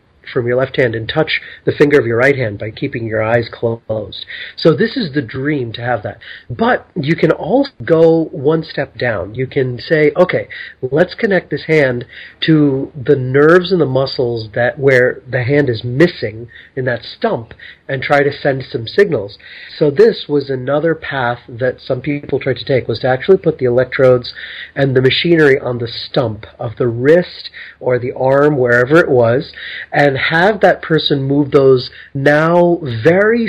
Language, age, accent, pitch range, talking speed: English, 40-59, American, 125-155 Hz, 185 wpm